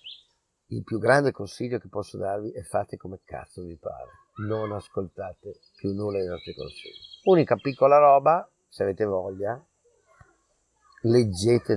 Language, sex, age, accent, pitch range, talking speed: Italian, male, 50-69, native, 100-145 Hz, 140 wpm